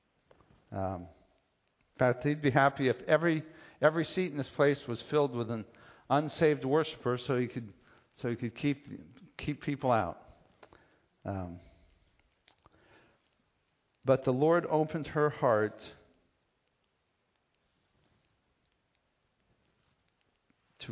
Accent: American